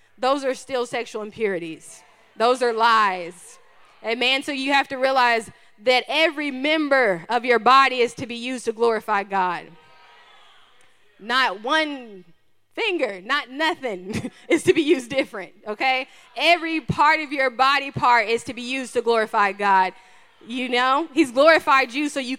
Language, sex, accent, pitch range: English, female, American, 210-275 Hz